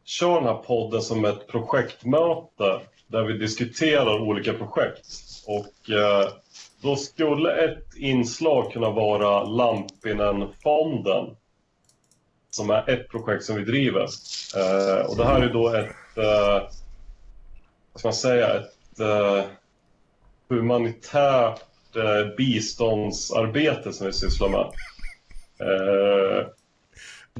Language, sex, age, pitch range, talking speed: Swedish, male, 30-49, 105-125 Hz, 110 wpm